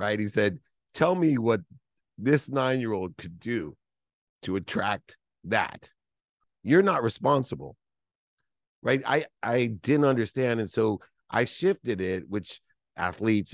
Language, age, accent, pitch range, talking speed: English, 50-69, American, 90-110 Hz, 125 wpm